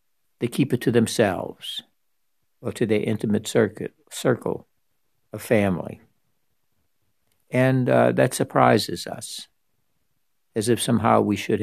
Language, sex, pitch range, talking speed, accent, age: English, male, 100-115 Hz, 120 wpm, American, 60-79